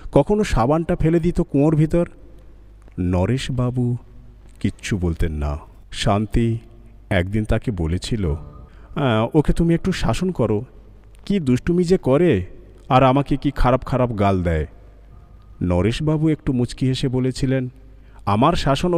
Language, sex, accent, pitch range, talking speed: Bengali, male, native, 95-140 Hz, 115 wpm